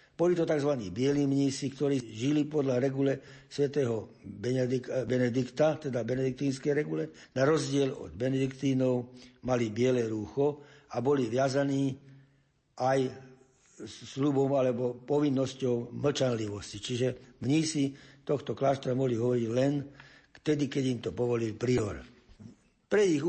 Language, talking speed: Slovak, 115 wpm